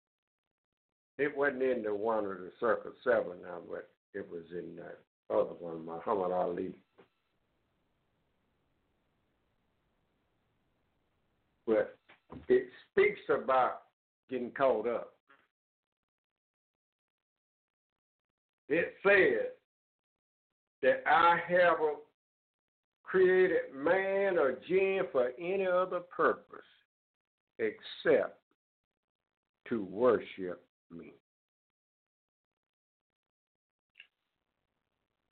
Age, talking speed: 60-79, 75 wpm